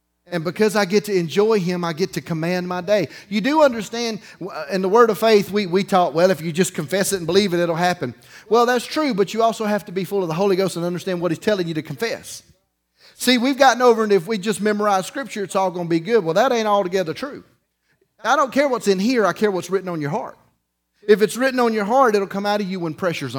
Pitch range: 140-215 Hz